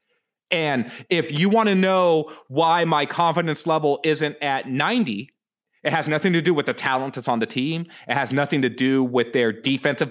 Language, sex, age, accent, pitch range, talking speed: English, male, 30-49, American, 130-170 Hz, 195 wpm